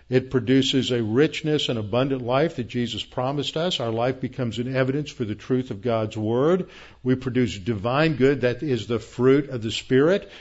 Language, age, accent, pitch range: English, 50-69, American, 120-140 Hz